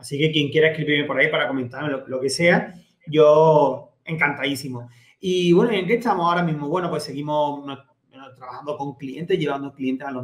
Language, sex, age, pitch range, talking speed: Spanish, male, 30-49, 140-170 Hz, 190 wpm